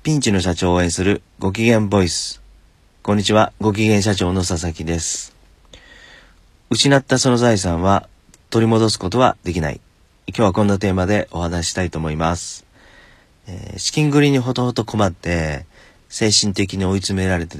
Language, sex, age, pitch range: Japanese, male, 40-59, 85-105 Hz